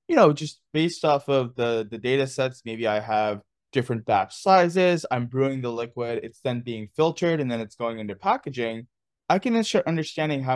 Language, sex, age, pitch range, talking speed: English, male, 20-39, 120-165 Hz, 200 wpm